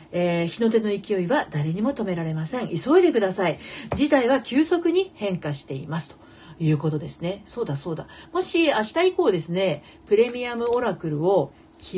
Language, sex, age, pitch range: Japanese, female, 40-59, 150-235 Hz